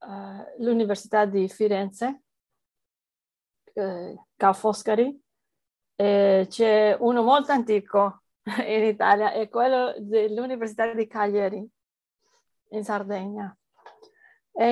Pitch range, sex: 205-245 Hz, female